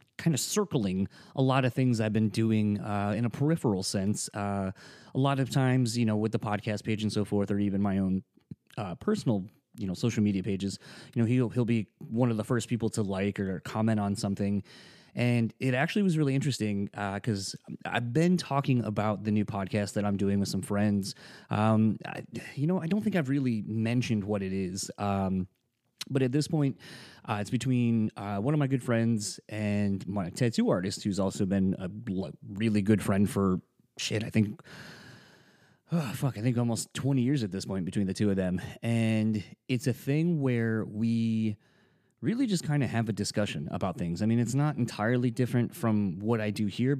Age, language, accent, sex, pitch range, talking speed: 30-49, English, American, male, 100-125 Hz, 205 wpm